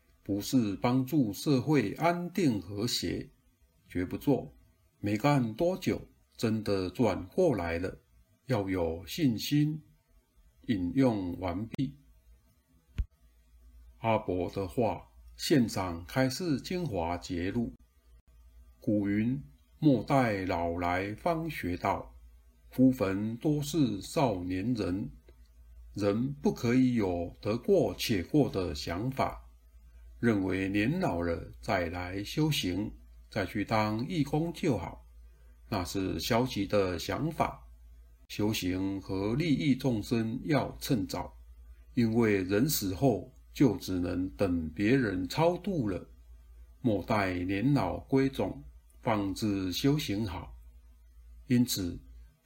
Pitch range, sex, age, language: 80-130 Hz, male, 50-69, Chinese